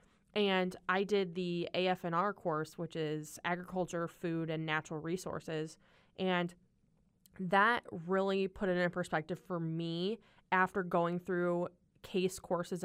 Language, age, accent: English, 20-39, American